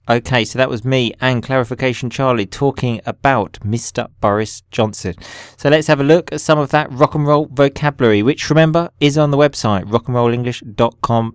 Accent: British